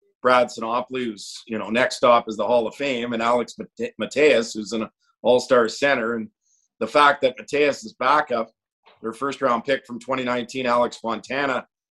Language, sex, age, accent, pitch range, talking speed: English, male, 50-69, American, 115-140 Hz, 160 wpm